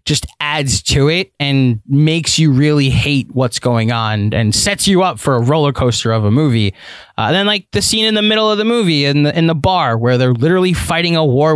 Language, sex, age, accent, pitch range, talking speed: English, male, 20-39, American, 125-170 Hz, 240 wpm